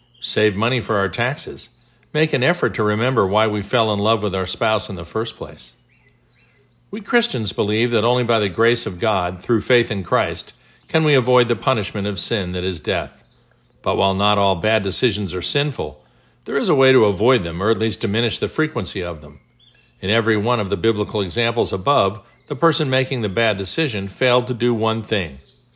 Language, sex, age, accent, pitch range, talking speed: English, male, 50-69, American, 100-125 Hz, 205 wpm